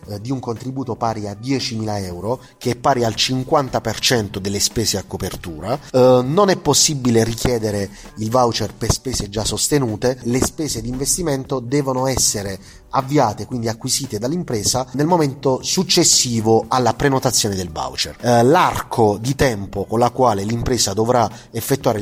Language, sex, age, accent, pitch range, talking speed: Italian, male, 30-49, native, 105-130 Hz, 140 wpm